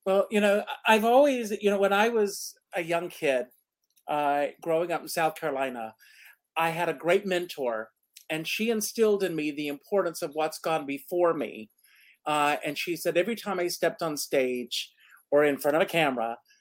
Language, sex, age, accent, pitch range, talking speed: English, male, 50-69, American, 150-195 Hz, 190 wpm